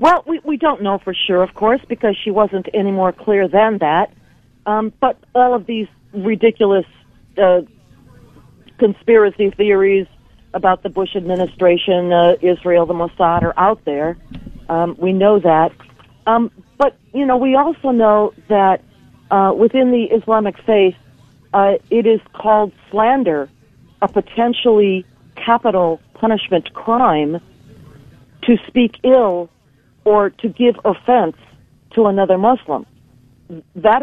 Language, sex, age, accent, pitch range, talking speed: English, female, 50-69, American, 170-220 Hz, 130 wpm